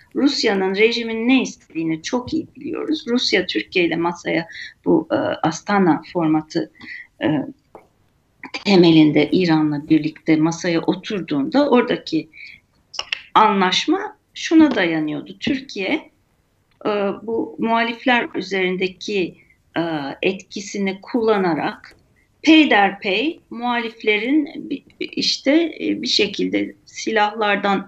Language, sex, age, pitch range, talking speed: Turkish, female, 40-59, 170-255 Hz, 75 wpm